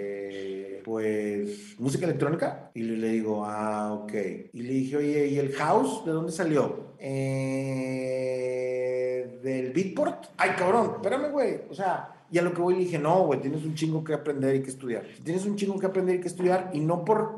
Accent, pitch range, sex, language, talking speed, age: Mexican, 145-210 Hz, male, Spanish, 190 wpm, 40-59